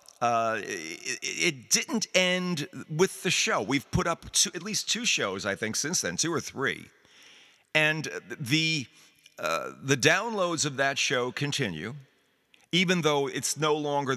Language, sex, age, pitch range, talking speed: English, male, 50-69, 115-170 Hz, 155 wpm